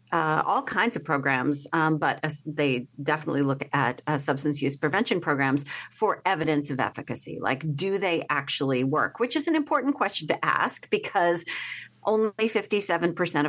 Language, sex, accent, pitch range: English, female, American, 140-180 Hz